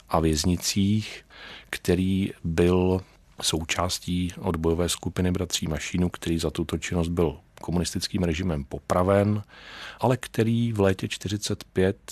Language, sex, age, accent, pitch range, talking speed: Czech, male, 40-59, native, 85-100 Hz, 110 wpm